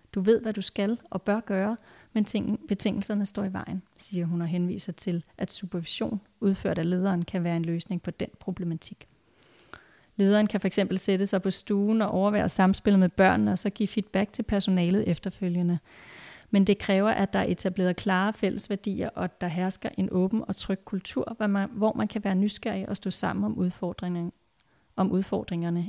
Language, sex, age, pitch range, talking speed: Danish, female, 30-49, 180-205 Hz, 180 wpm